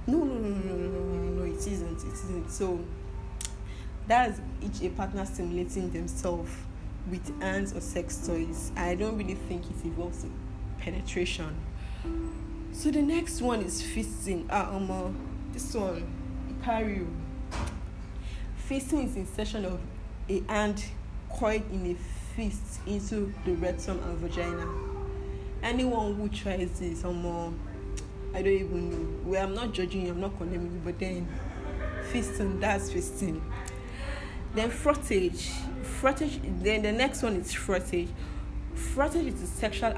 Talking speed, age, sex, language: 145 wpm, 10-29, female, English